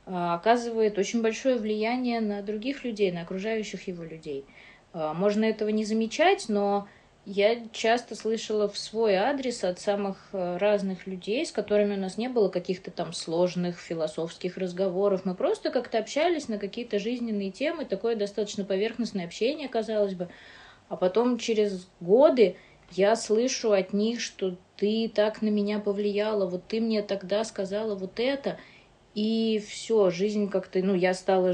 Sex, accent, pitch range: female, native, 180-220 Hz